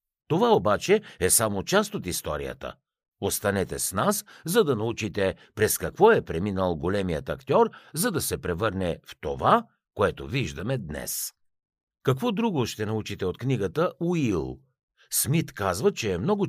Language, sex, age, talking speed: Bulgarian, male, 60-79, 140 wpm